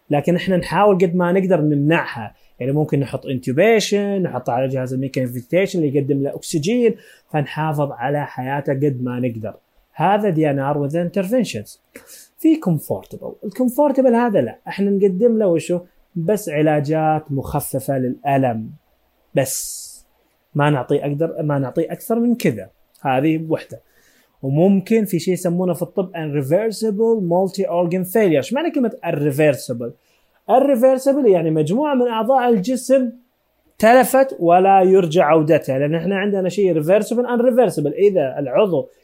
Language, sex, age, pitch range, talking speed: Arabic, male, 20-39, 145-205 Hz, 135 wpm